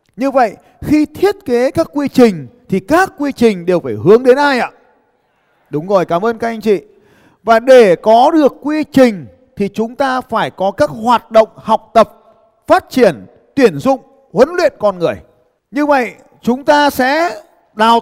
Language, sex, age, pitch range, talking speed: Vietnamese, male, 20-39, 205-275 Hz, 185 wpm